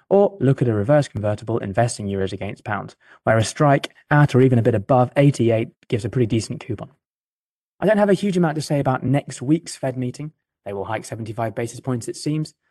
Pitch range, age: 110-140 Hz, 20-39